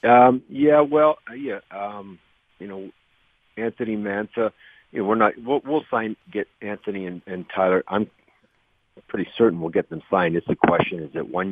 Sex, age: male, 50-69